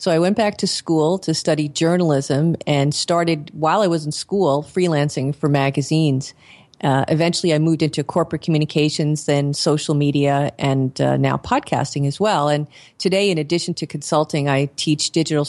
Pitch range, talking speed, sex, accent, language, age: 145-170 Hz, 170 wpm, female, American, English, 40-59